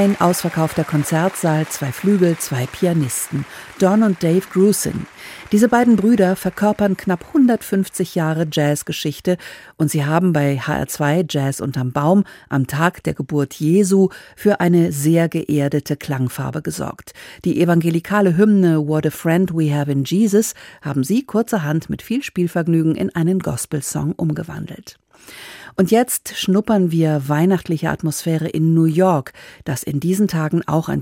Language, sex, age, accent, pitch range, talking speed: German, female, 50-69, German, 155-195 Hz, 140 wpm